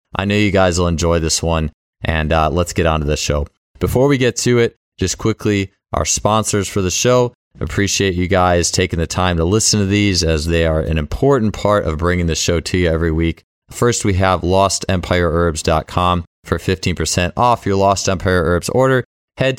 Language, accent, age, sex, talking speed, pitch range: English, American, 20-39, male, 200 wpm, 80-100 Hz